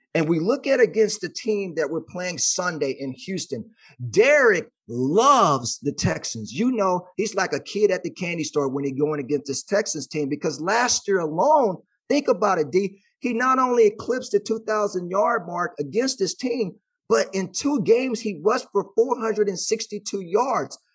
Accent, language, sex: American, English, male